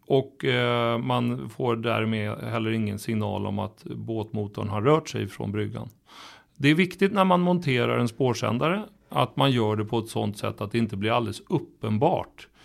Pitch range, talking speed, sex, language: 110-145 Hz, 175 wpm, male, Swedish